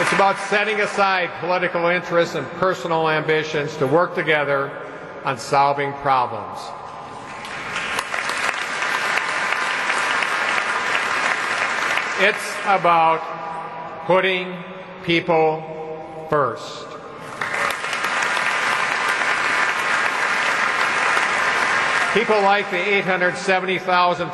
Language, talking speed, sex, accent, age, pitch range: English, 60 wpm, male, American, 50-69, 155-185 Hz